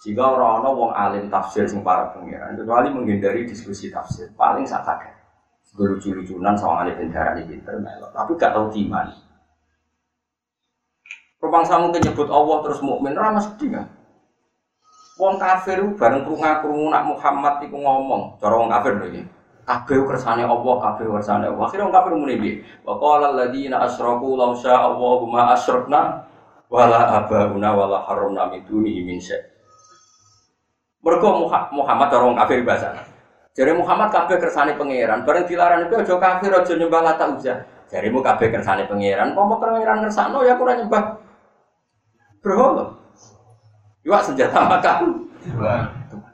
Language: Indonesian